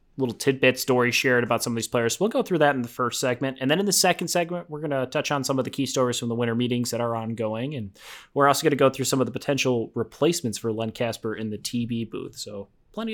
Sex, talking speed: male, 285 wpm